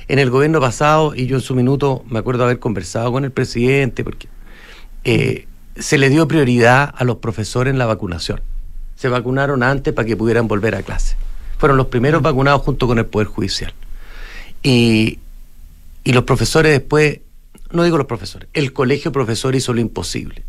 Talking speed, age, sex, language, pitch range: 180 wpm, 50-69, male, Spanish, 115-150 Hz